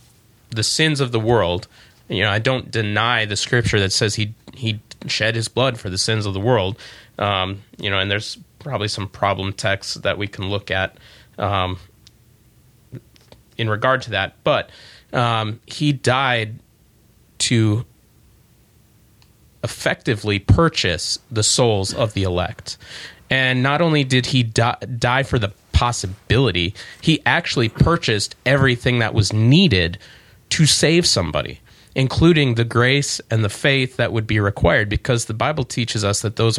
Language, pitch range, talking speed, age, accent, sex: English, 105-130 Hz, 155 wpm, 30-49, American, male